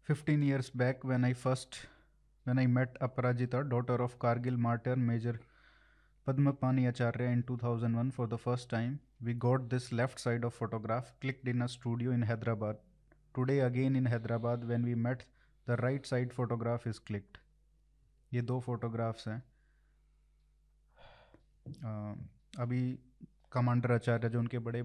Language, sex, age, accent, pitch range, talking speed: Hindi, male, 20-39, native, 110-125 Hz, 150 wpm